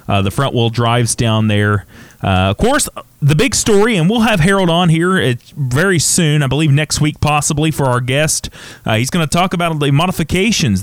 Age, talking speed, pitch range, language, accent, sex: 30-49, 210 wpm, 105-125 Hz, English, American, male